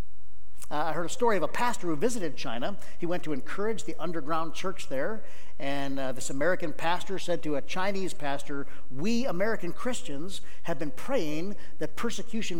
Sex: male